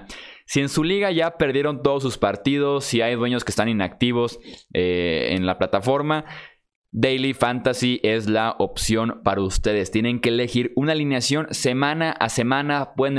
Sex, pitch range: male, 110-135 Hz